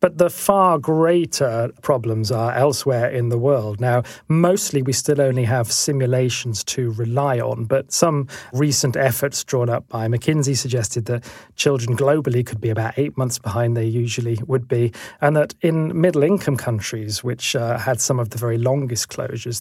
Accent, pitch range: British, 120-145 Hz